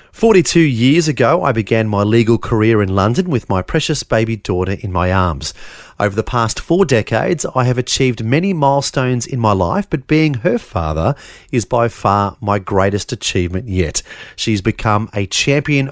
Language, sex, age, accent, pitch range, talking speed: English, male, 30-49, Australian, 105-140 Hz, 175 wpm